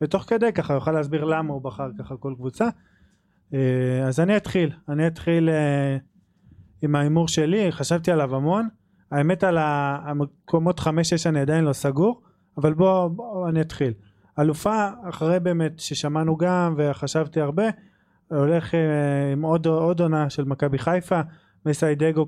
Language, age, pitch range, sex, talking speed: Hebrew, 20-39, 140-170 Hz, male, 135 wpm